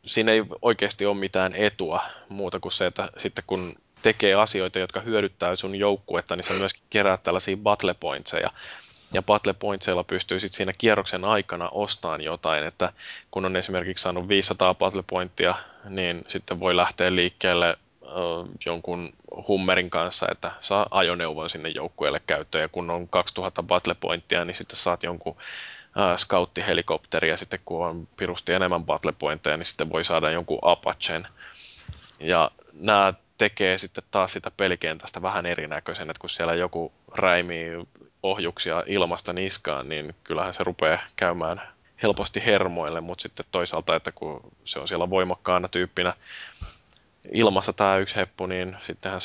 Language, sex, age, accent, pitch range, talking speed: Finnish, male, 20-39, native, 90-100 Hz, 145 wpm